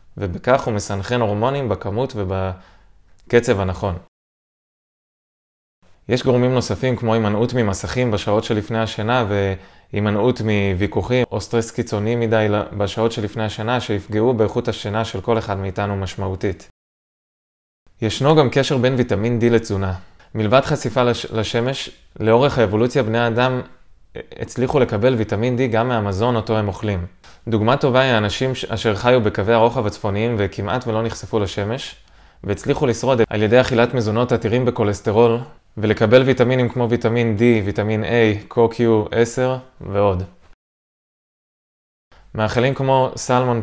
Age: 20-39